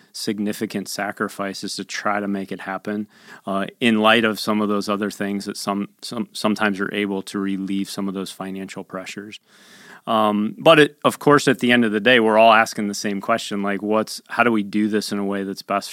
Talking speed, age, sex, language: 220 wpm, 30-49, male, English